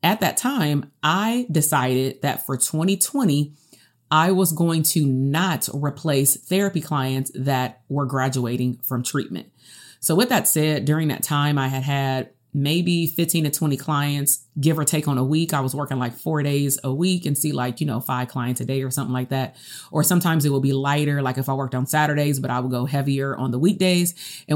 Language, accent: English, American